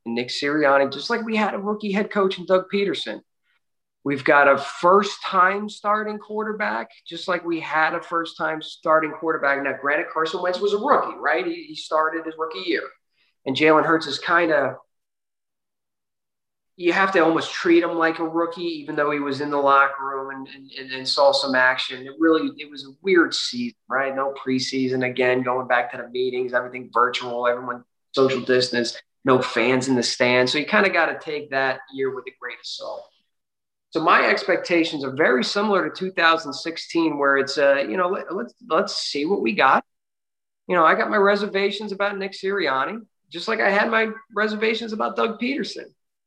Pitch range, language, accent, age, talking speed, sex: 135-205 Hz, English, American, 30-49, 190 wpm, male